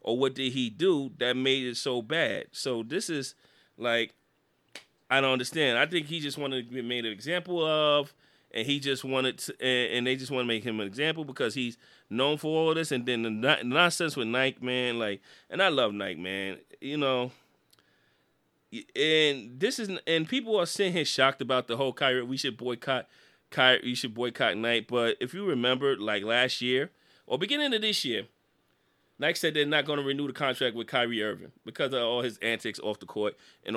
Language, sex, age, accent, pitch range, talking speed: English, male, 30-49, American, 115-140 Hz, 210 wpm